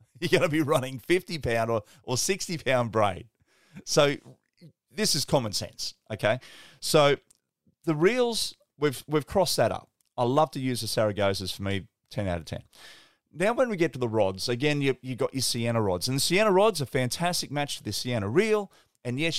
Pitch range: 110-150 Hz